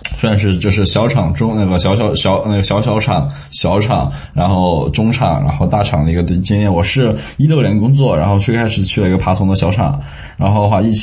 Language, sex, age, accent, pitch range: Chinese, male, 20-39, native, 90-115 Hz